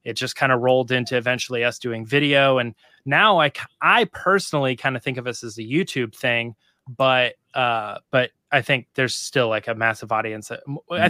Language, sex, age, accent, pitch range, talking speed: English, male, 20-39, American, 120-145 Hz, 195 wpm